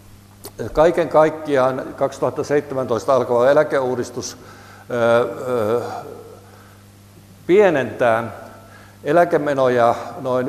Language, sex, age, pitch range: Finnish, male, 60-79, 110-160 Hz